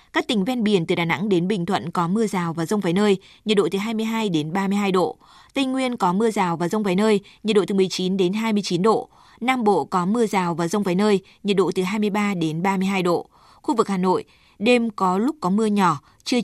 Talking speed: 245 wpm